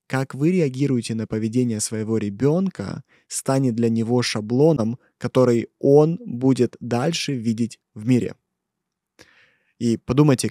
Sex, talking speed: male, 115 wpm